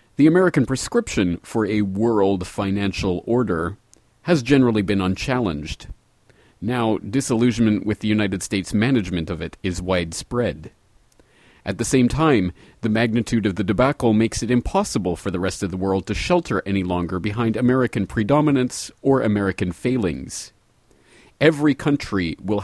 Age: 40-59